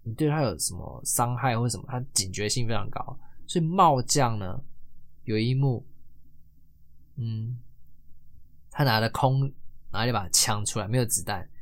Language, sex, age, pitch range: Chinese, male, 20-39, 85-135 Hz